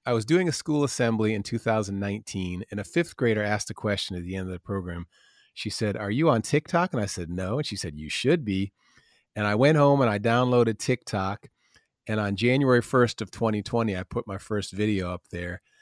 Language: English